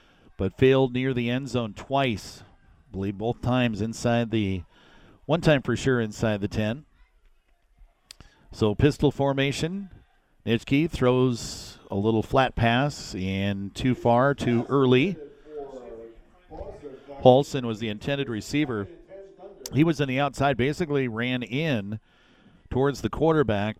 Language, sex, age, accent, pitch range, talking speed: English, male, 50-69, American, 105-130 Hz, 125 wpm